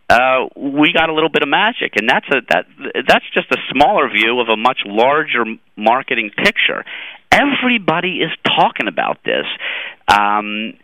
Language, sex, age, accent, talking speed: English, male, 30-49, American, 175 wpm